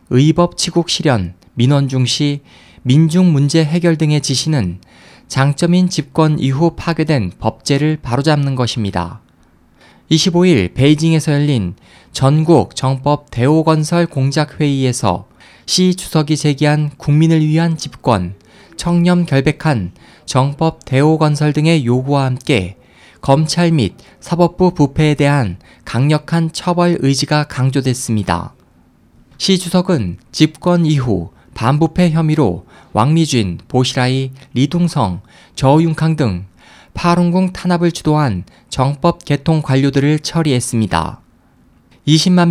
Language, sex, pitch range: Korean, male, 120-165 Hz